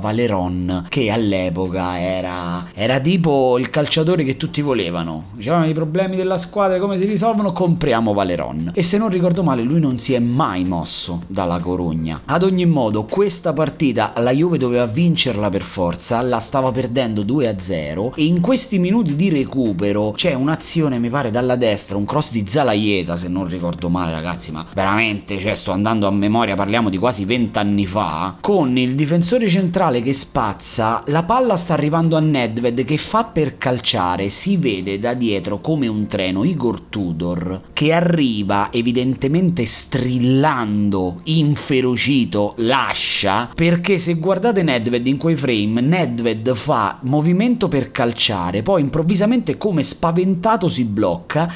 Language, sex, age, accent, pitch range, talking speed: Italian, male, 30-49, native, 105-165 Hz, 150 wpm